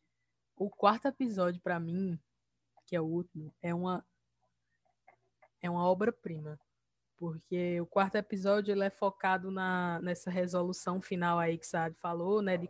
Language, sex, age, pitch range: Portuguese, female, 20-39, 160-195 Hz